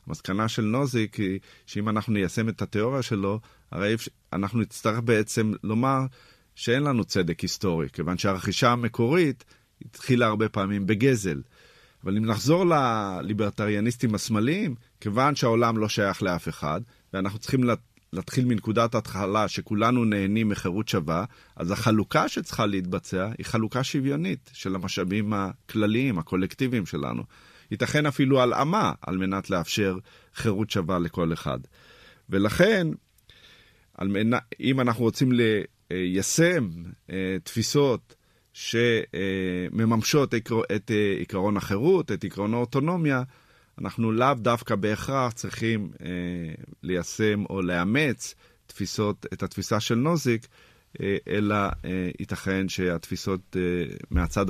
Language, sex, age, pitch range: Hebrew, male, 40-59, 95-120 Hz